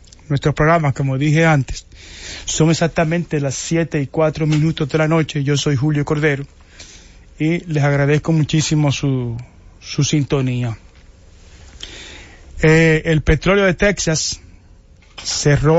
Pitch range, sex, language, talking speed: 135-165 Hz, male, English, 120 wpm